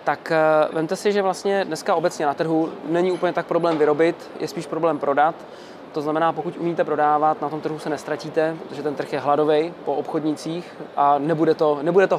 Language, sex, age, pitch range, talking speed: Czech, male, 20-39, 150-180 Hz, 195 wpm